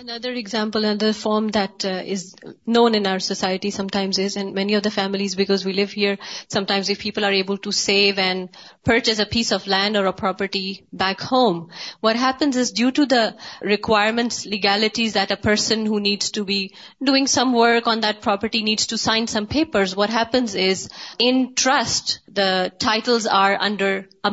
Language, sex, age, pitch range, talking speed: Urdu, female, 30-49, 200-250 Hz, 190 wpm